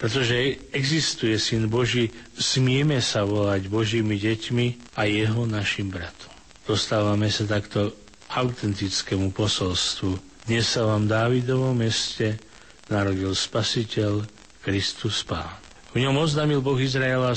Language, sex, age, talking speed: Slovak, male, 40-59, 110 wpm